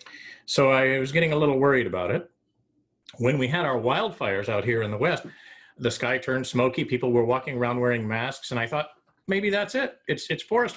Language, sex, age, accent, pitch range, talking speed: English, male, 40-59, American, 110-135 Hz, 210 wpm